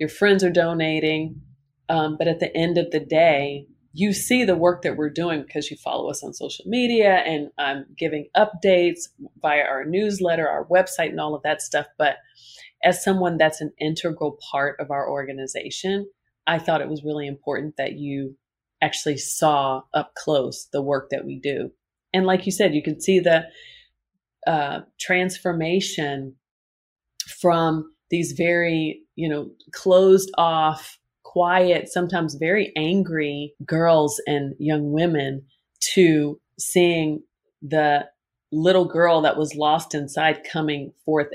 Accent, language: American, English